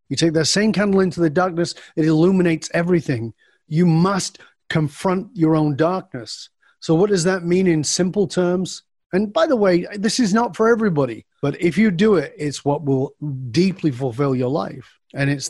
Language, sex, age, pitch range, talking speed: English, male, 30-49, 160-215 Hz, 185 wpm